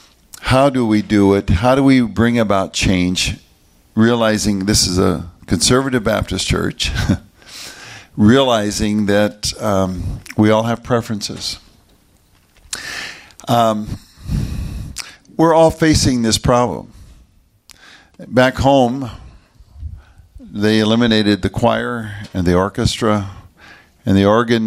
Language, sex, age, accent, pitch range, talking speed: English, male, 50-69, American, 100-120 Hz, 105 wpm